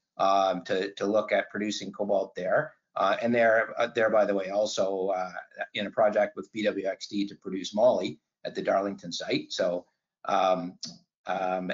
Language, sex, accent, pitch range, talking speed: English, male, American, 100-120 Hz, 170 wpm